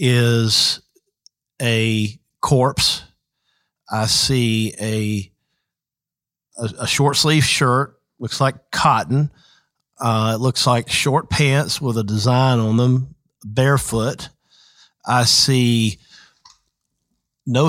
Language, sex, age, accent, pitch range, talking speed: English, male, 50-69, American, 115-140 Hz, 100 wpm